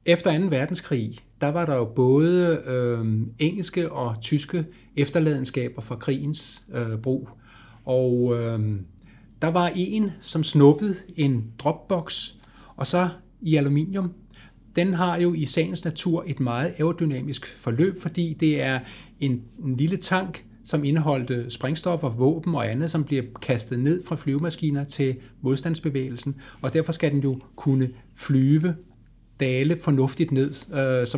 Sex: male